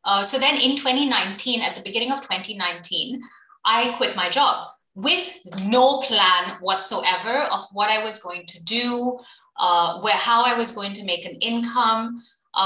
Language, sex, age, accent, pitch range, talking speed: English, female, 30-49, Indian, 185-255 Hz, 165 wpm